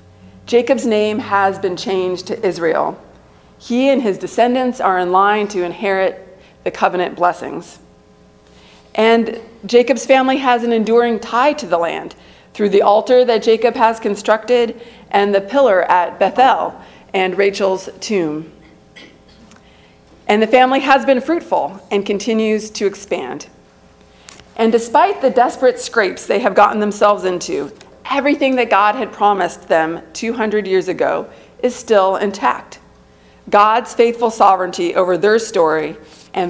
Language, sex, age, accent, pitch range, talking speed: English, female, 40-59, American, 170-225 Hz, 135 wpm